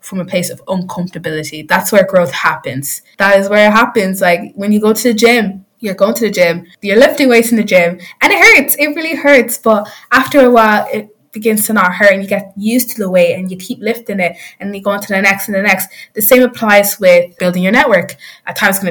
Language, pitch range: English, 180-220 Hz